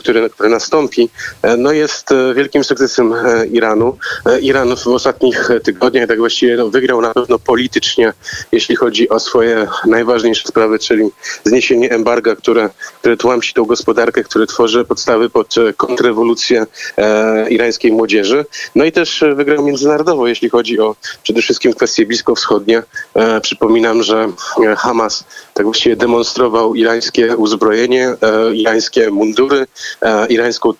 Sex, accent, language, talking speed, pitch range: male, native, Polish, 125 wpm, 115-135 Hz